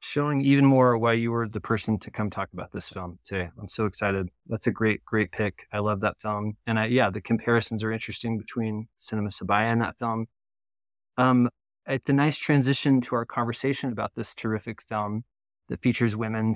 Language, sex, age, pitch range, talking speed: English, male, 30-49, 110-130 Hz, 195 wpm